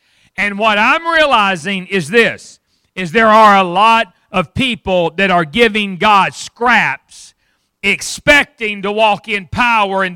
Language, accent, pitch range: English, American, 185-230 Hz